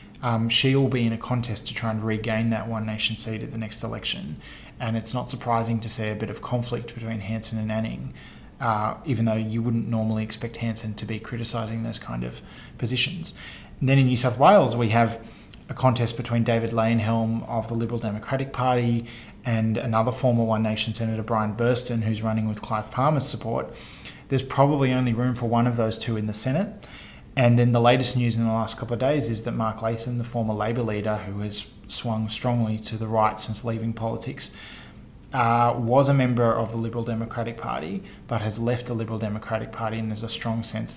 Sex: male